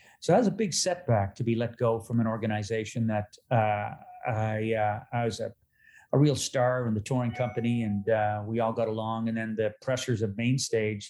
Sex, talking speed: male, 215 wpm